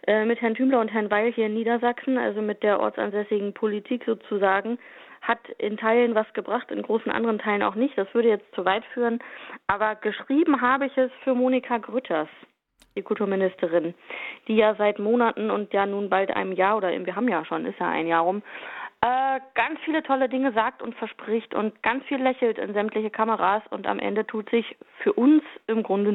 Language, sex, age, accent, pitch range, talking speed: German, female, 20-39, German, 200-235 Hz, 195 wpm